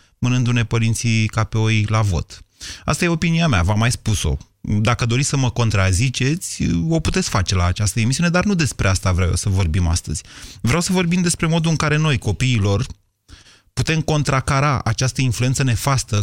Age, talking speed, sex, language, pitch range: 30-49, 180 wpm, male, Romanian, 100-130 Hz